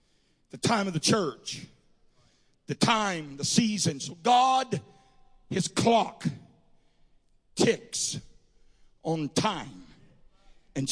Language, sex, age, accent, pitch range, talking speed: English, male, 50-69, American, 145-205 Hz, 95 wpm